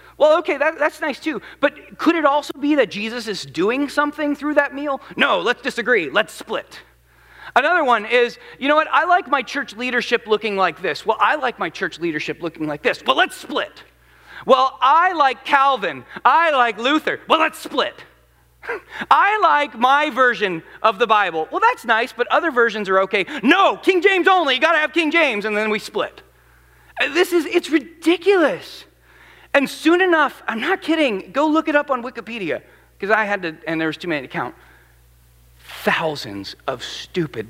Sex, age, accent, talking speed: male, 30-49, American, 185 wpm